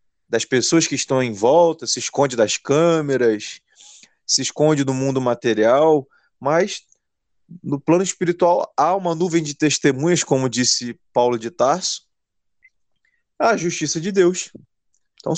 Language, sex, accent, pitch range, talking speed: Portuguese, male, Brazilian, 110-150 Hz, 135 wpm